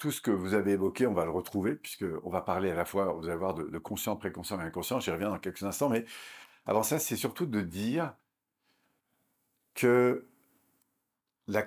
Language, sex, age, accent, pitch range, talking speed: French, male, 50-69, French, 95-125 Hz, 190 wpm